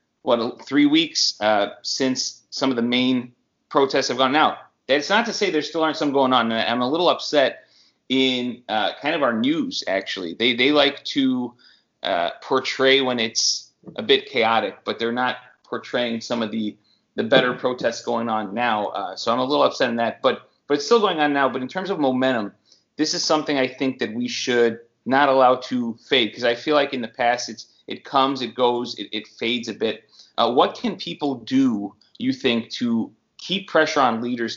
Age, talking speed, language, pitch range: 30-49, 205 wpm, English, 120-150 Hz